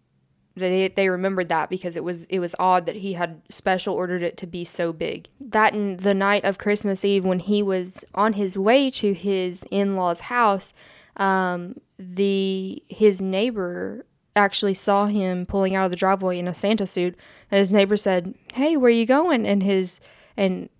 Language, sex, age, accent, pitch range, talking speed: English, female, 10-29, American, 175-200 Hz, 190 wpm